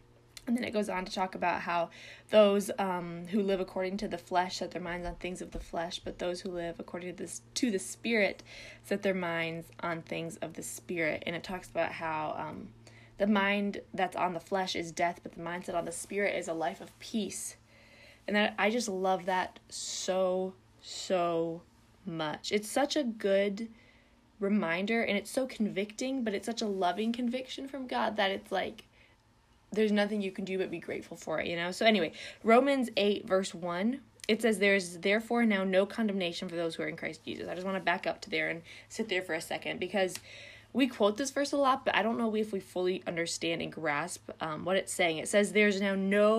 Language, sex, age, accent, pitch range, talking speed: English, female, 20-39, American, 170-210 Hz, 220 wpm